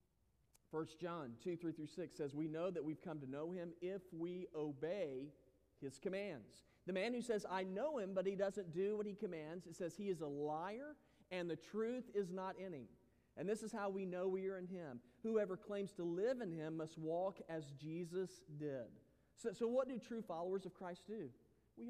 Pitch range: 140-195 Hz